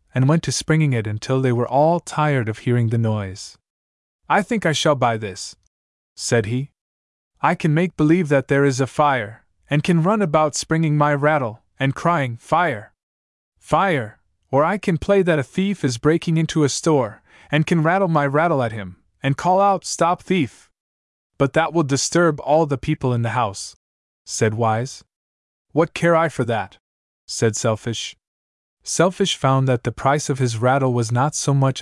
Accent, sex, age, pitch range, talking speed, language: American, male, 20-39, 110-150 Hz, 185 wpm, English